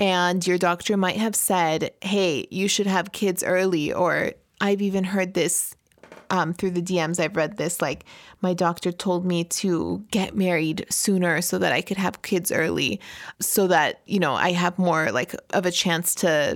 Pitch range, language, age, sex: 175-210 Hz, English, 30-49, female